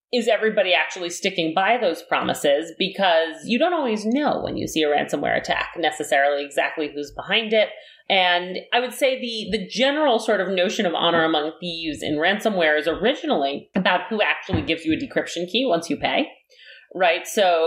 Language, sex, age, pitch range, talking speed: English, female, 30-49, 165-230 Hz, 185 wpm